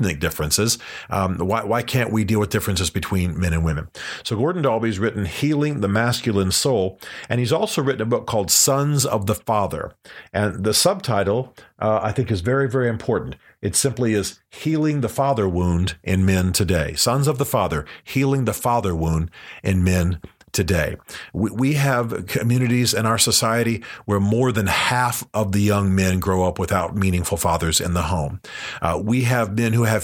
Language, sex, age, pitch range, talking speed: English, male, 40-59, 95-120 Hz, 185 wpm